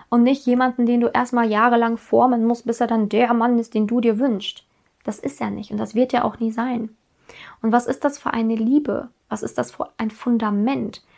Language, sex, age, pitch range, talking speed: German, female, 20-39, 220-250 Hz, 230 wpm